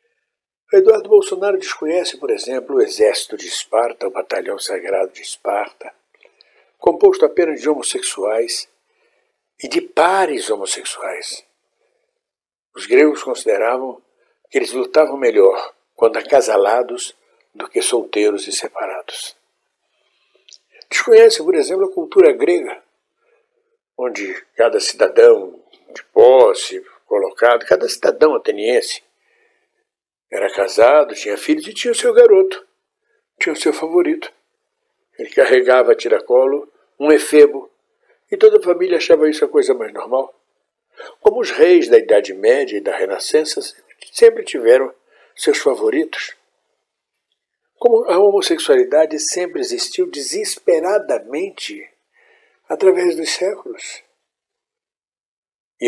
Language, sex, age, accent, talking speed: Portuguese, male, 60-79, Brazilian, 110 wpm